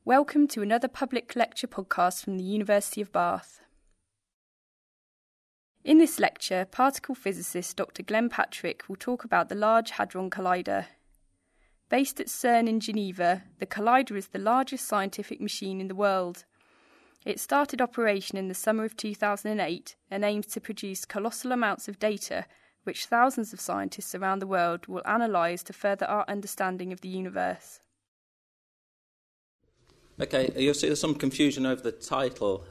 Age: 10-29